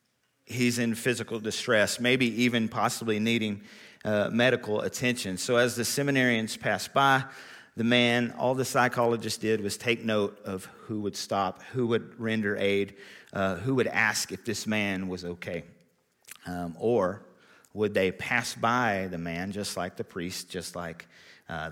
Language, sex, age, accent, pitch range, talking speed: English, male, 40-59, American, 105-130 Hz, 160 wpm